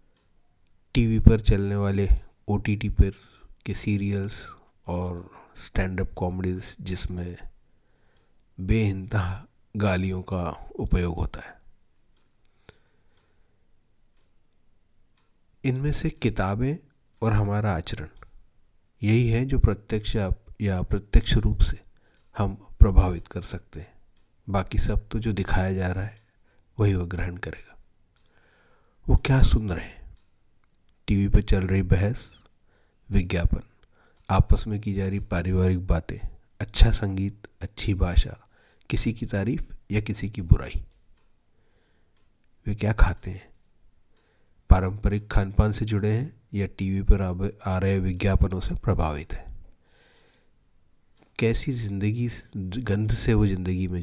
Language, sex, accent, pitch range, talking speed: Hindi, male, native, 90-105 Hz, 115 wpm